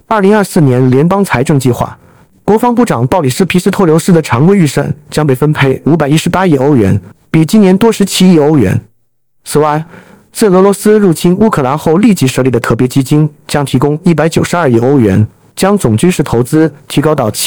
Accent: native